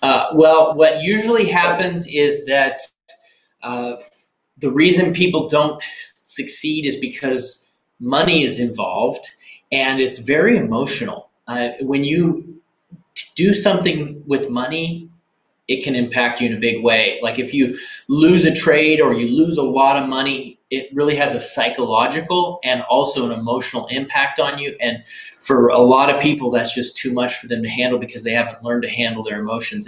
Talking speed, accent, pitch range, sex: 170 wpm, American, 125-155 Hz, male